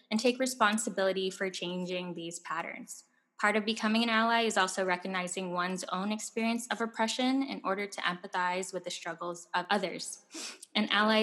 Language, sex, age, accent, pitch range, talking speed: English, female, 10-29, American, 185-220 Hz, 165 wpm